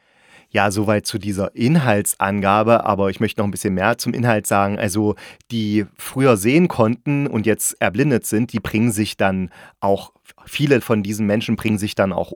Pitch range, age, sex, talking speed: 105-130 Hz, 30-49, male, 180 wpm